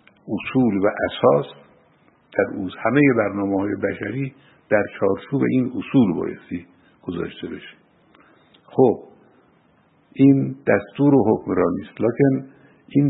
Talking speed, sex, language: 105 wpm, male, Persian